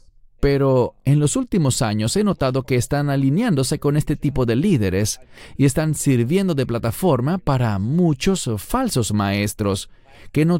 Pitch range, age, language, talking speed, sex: 110-155 Hz, 40-59, English, 145 wpm, male